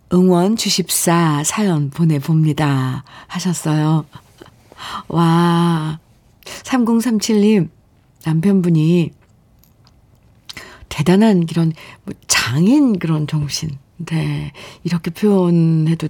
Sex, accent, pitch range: female, native, 155-210 Hz